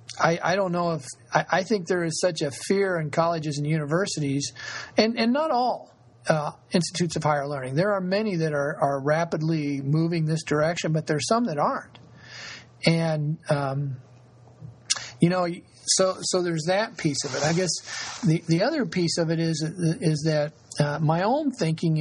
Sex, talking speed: male, 185 wpm